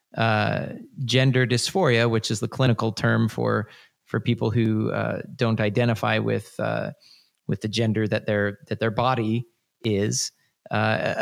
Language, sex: English, male